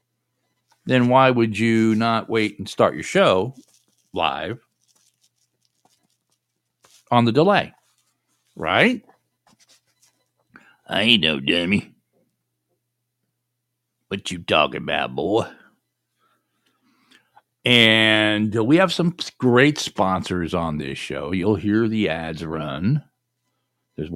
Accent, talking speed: American, 95 wpm